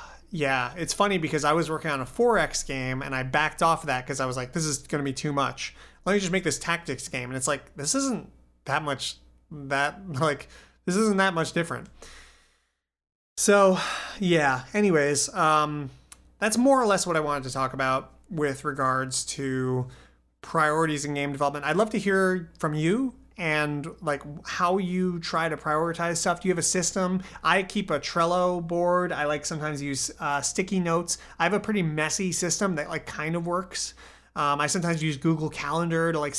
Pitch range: 140-175 Hz